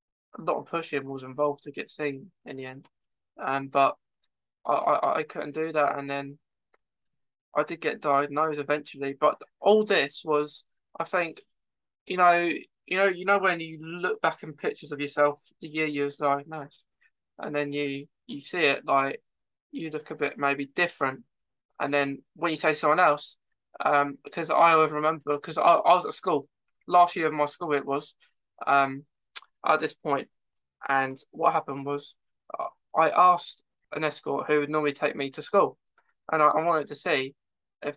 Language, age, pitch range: English, 20-39, 145-165 Hz